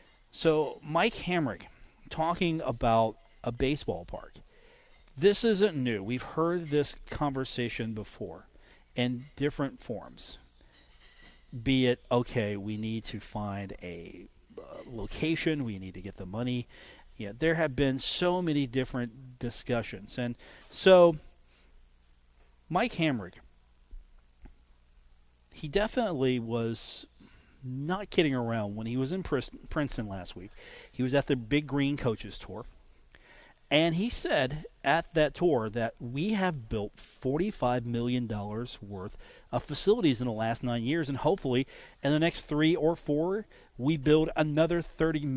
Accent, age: American, 40-59